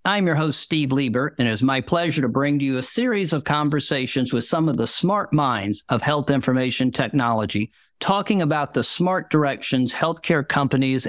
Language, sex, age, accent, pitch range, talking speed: English, male, 50-69, American, 125-155 Hz, 190 wpm